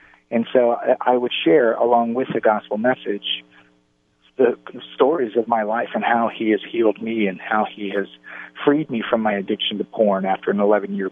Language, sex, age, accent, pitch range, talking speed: English, male, 40-59, American, 105-125 Hz, 190 wpm